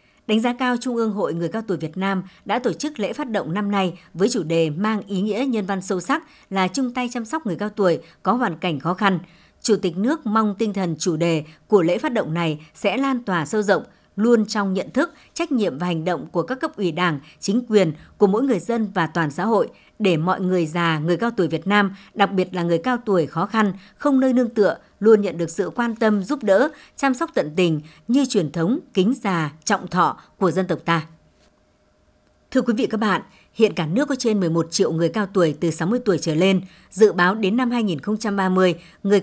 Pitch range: 175-225 Hz